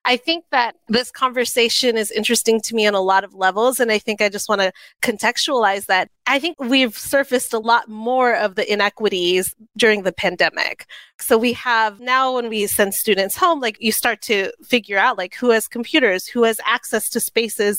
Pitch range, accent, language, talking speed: 205-245 Hz, American, English, 200 wpm